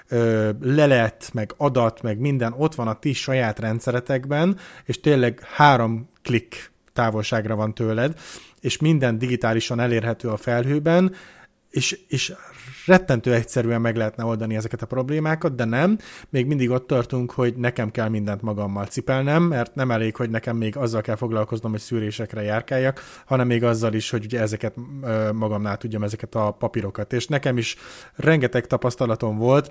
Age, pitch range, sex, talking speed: 30-49, 115-130 Hz, male, 155 wpm